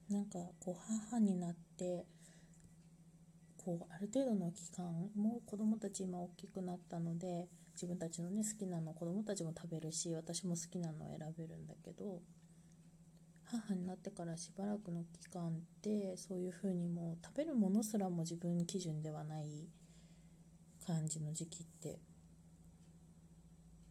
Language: Japanese